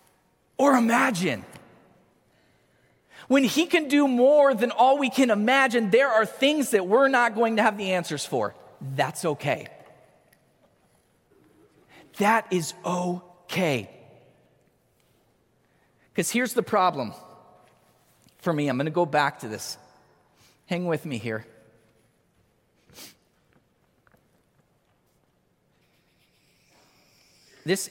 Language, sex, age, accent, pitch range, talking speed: English, male, 40-59, American, 160-225 Hz, 100 wpm